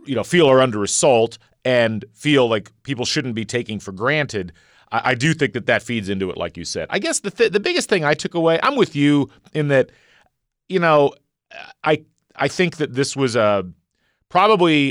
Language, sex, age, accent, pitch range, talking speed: English, male, 40-59, American, 110-145 Hz, 210 wpm